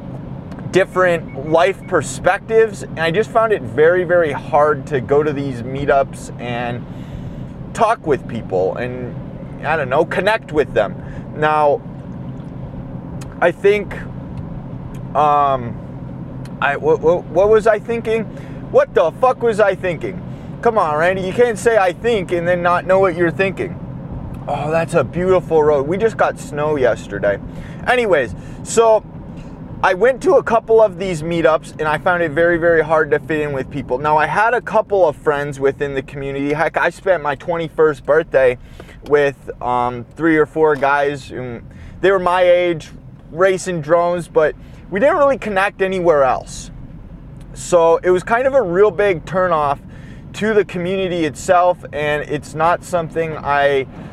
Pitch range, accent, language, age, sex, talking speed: 145-195 Hz, American, English, 30-49, male, 160 wpm